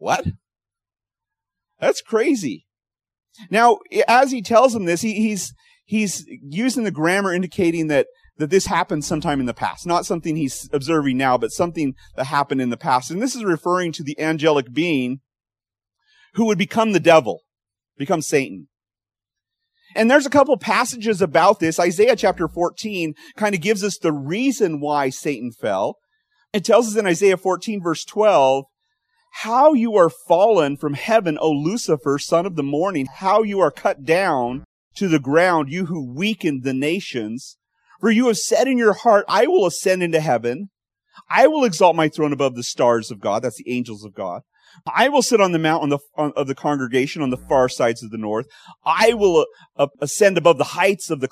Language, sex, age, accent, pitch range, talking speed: English, male, 30-49, American, 130-210 Hz, 180 wpm